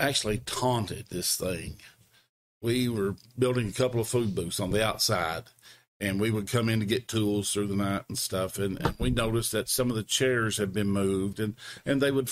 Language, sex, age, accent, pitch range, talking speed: English, male, 50-69, American, 105-125 Hz, 215 wpm